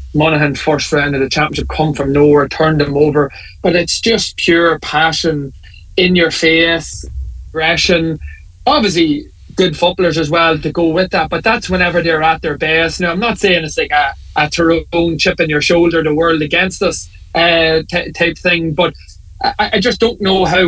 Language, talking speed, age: English, 185 wpm, 20-39